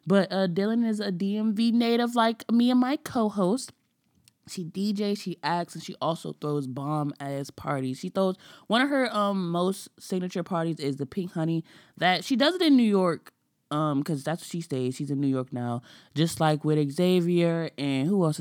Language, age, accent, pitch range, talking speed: English, 20-39, American, 150-210 Hz, 200 wpm